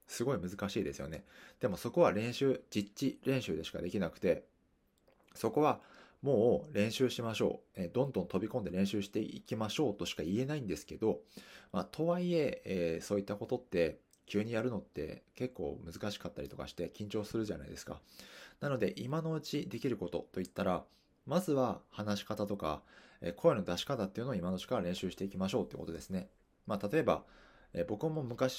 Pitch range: 95-130 Hz